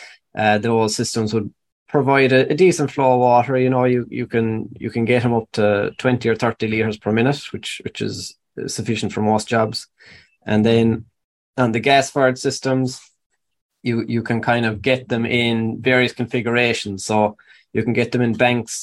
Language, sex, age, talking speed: English, male, 20-39, 190 wpm